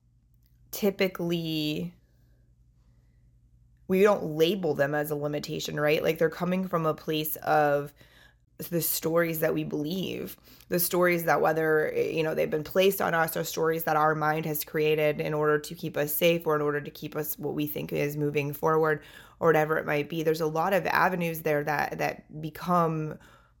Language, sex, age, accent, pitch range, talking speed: English, female, 20-39, American, 150-165 Hz, 180 wpm